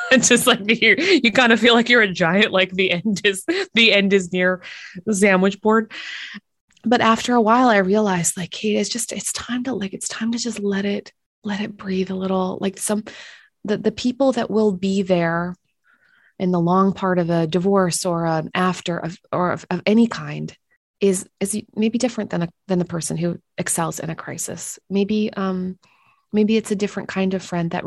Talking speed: 205 wpm